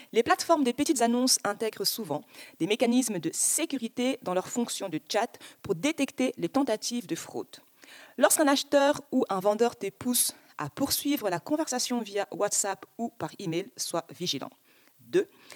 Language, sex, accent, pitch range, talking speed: French, female, French, 190-280 Hz, 160 wpm